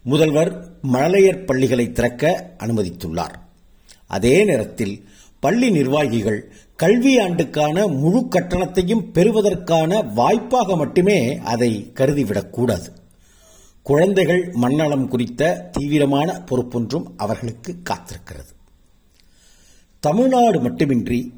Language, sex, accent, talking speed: Tamil, male, native, 75 wpm